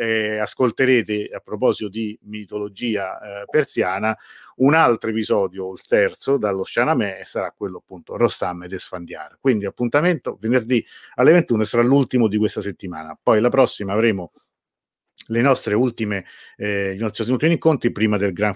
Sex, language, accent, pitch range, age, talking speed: male, Italian, native, 100-125 Hz, 50-69, 150 wpm